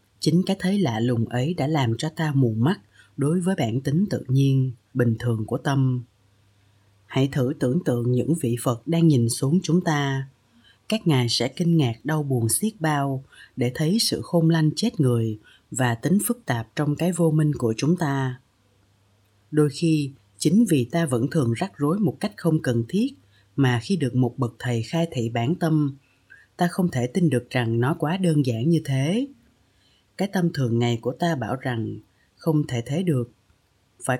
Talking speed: 195 wpm